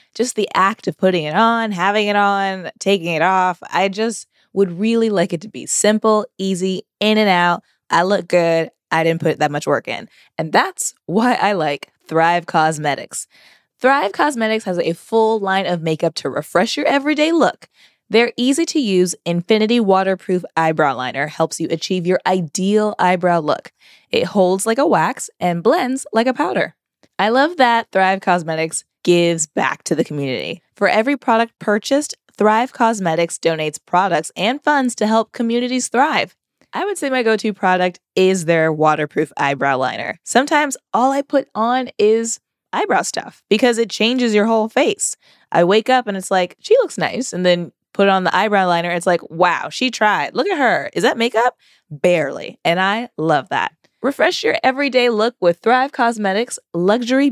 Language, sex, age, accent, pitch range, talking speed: English, female, 20-39, American, 175-235 Hz, 175 wpm